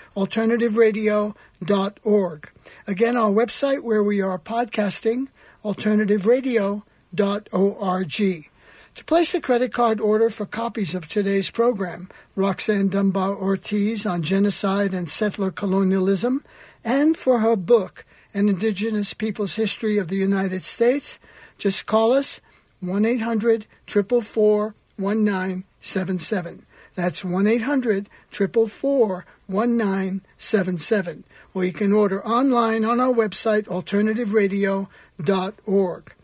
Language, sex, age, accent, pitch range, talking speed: English, male, 60-79, American, 195-230 Hz, 95 wpm